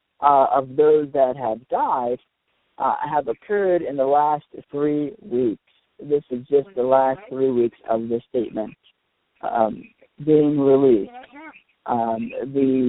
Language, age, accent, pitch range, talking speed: English, 50-69, American, 120-145 Hz, 135 wpm